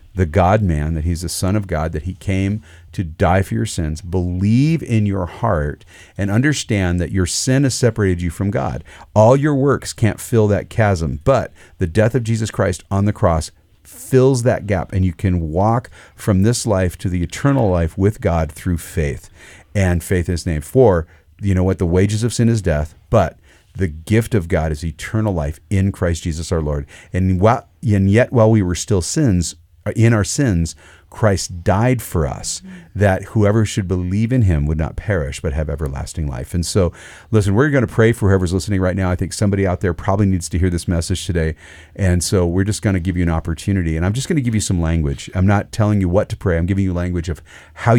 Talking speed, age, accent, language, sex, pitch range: 220 wpm, 40-59, American, English, male, 85-105 Hz